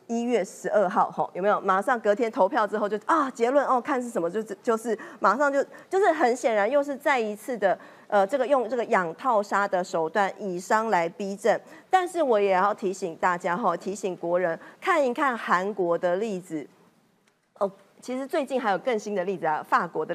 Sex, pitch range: female, 190-255 Hz